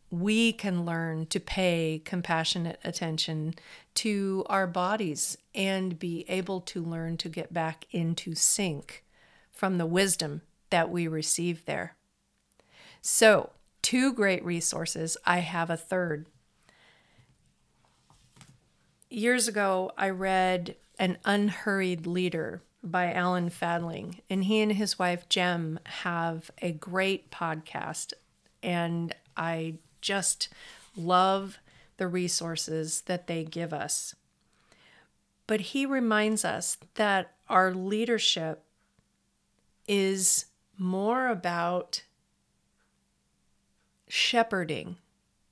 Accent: American